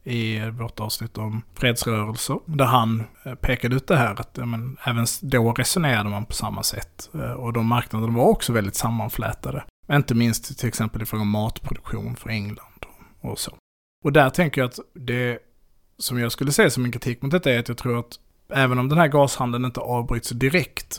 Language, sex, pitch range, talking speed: Swedish, male, 110-125 Hz, 195 wpm